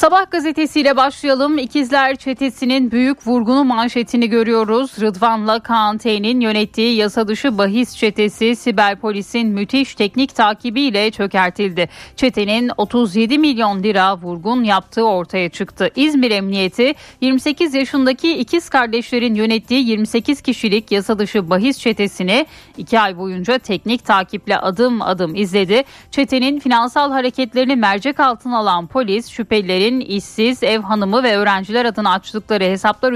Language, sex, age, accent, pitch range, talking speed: Turkish, female, 10-29, native, 205-255 Hz, 120 wpm